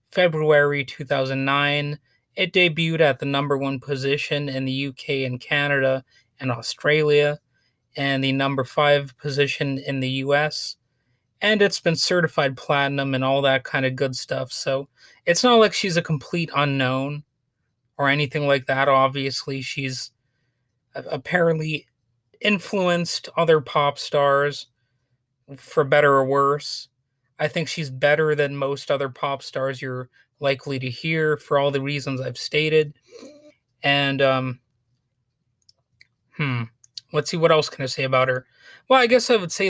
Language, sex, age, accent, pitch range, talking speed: English, male, 30-49, American, 130-155 Hz, 145 wpm